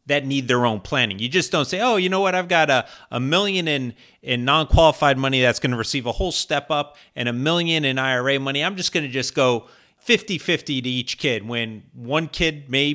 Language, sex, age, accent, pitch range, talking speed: English, male, 40-59, American, 120-150 Hz, 230 wpm